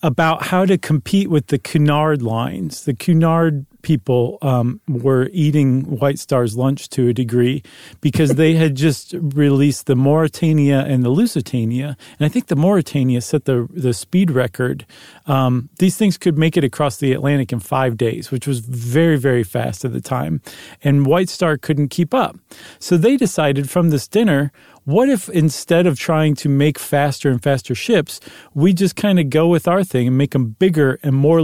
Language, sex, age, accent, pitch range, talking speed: English, male, 40-59, American, 130-160 Hz, 185 wpm